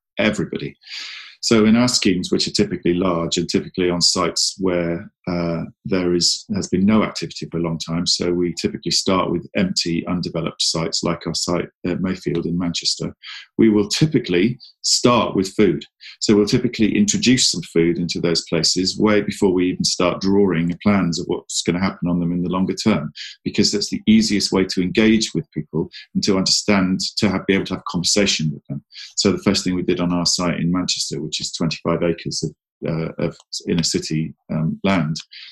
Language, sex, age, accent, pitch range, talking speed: English, male, 40-59, British, 85-105 Hz, 195 wpm